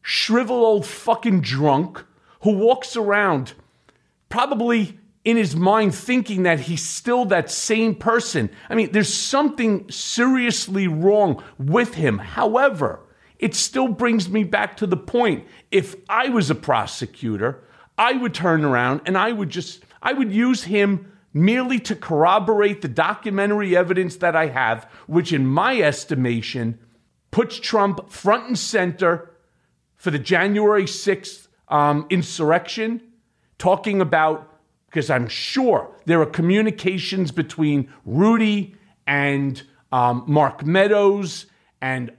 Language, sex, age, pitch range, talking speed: English, male, 40-59, 155-215 Hz, 130 wpm